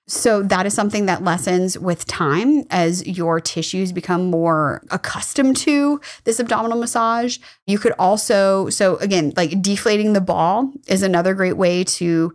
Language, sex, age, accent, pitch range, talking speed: English, female, 20-39, American, 170-215 Hz, 155 wpm